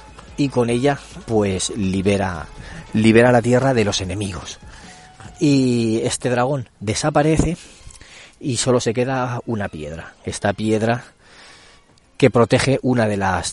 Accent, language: Spanish, Spanish